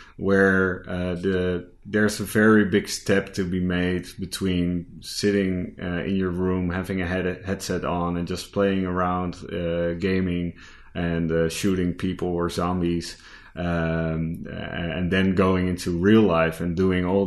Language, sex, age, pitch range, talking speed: English, male, 30-49, 85-95 Hz, 155 wpm